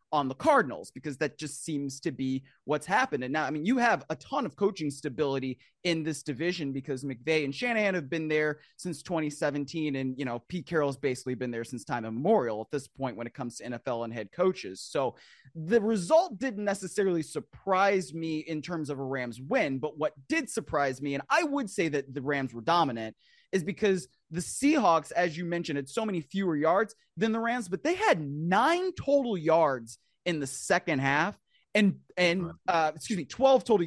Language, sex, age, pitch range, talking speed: English, male, 30-49, 140-200 Hz, 205 wpm